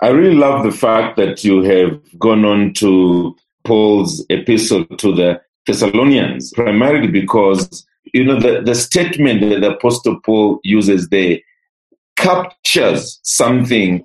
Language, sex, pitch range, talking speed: English, male, 100-130 Hz, 130 wpm